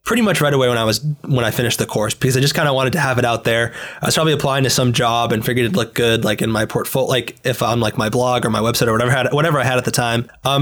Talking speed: 330 wpm